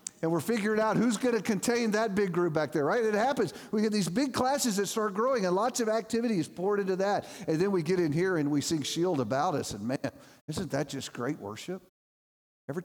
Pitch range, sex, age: 170-235 Hz, male, 50-69